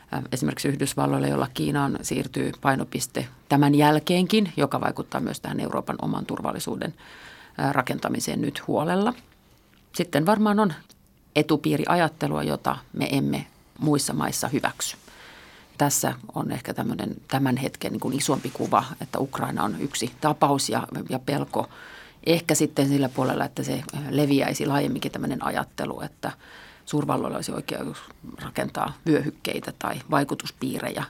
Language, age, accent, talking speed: Finnish, 40-59, native, 125 wpm